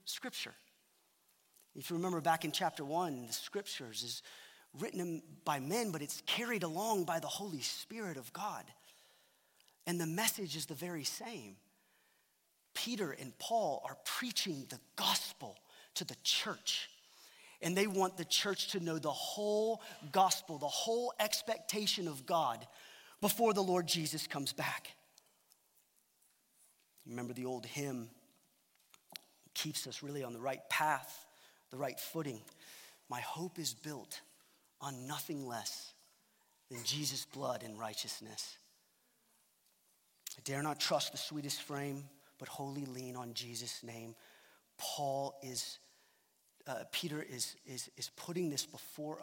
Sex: male